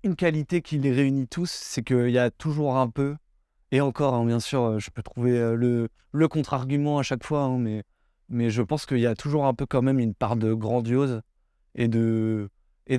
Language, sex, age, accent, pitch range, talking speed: French, male, 20-39, French, 115-140 Hz, 215 wpm